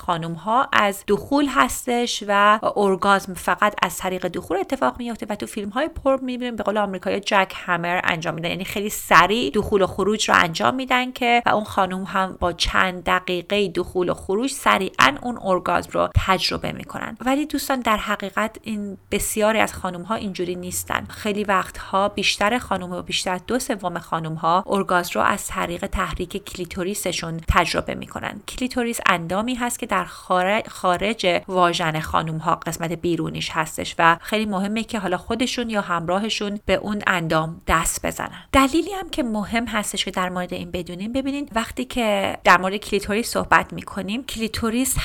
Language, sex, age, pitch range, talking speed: Persian, female, 30-49, 180-225 Hz, 165 wpm